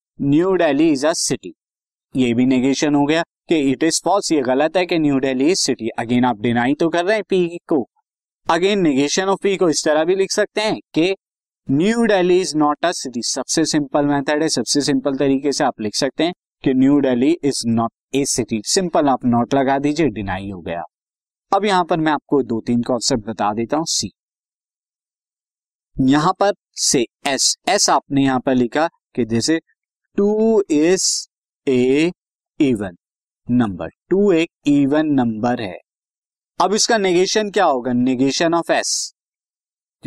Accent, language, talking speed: native, Hindi, 160 wpm